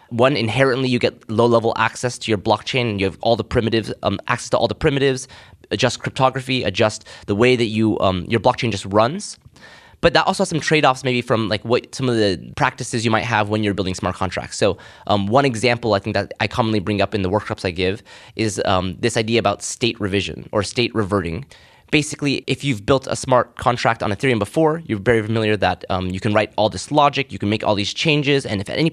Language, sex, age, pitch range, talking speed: English, male, 20-39, 105-130 Hz, 240 wpm